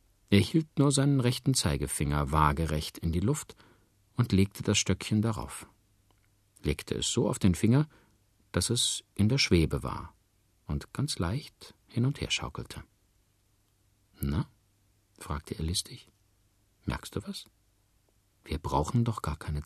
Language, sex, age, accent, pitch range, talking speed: German, male, 50-69, German, 85-110 Hz, 140 wpm